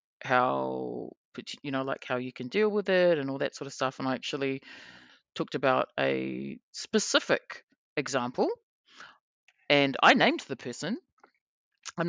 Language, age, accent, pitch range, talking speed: English, 30-49, Australian, 135-160 Hz, 150 wpm